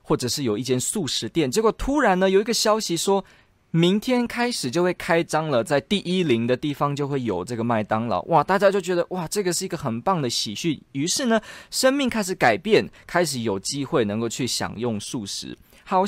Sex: male